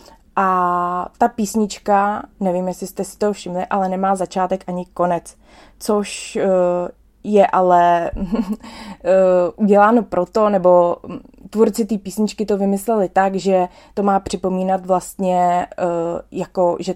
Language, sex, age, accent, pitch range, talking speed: Czech, female, 20-39, native, 180-210 Hz, 115 wpm